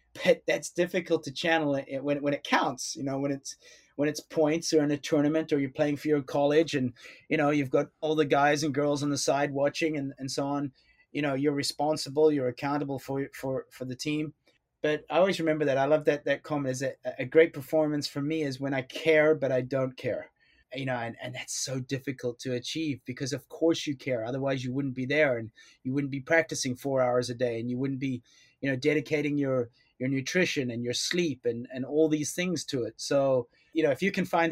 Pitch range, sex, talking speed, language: 130-155 Hz, male, 235 wpm, English